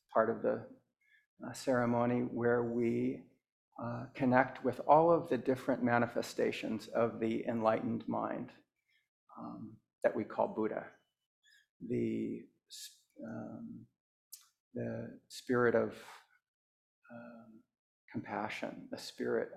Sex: male